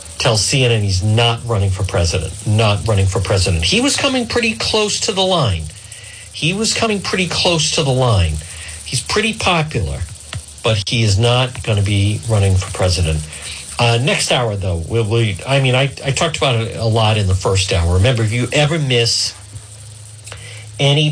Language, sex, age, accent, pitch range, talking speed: English, male, 50-69, American, 100-125 Hz, 180 wpm